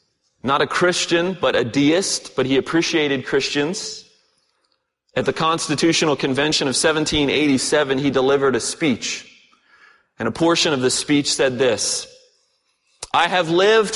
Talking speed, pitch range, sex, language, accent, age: 135 wpm, 140-185 Hz, male, English, American, 30-49